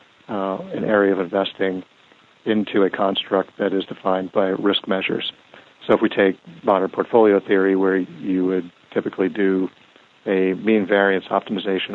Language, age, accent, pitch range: English, 50-69, American, 95-100 Hz